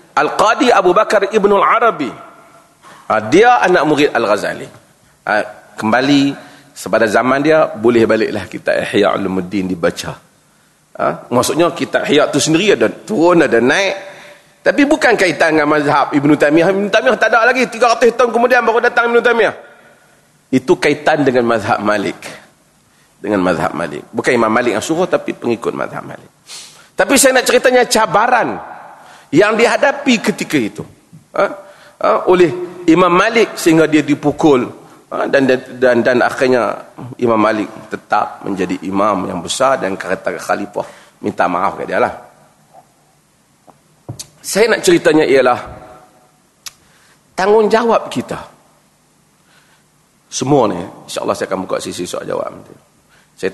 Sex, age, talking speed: male, 40-59, 140 wpm